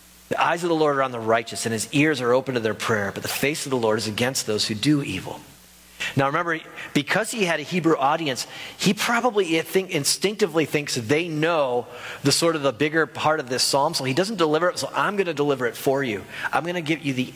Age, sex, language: 40-59, male, English